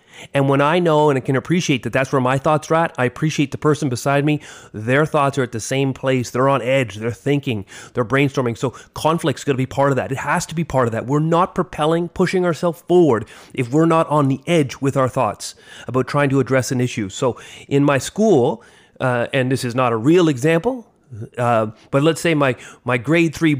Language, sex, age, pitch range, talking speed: English, male, 30-49, 130-160 Hz, 230 wpm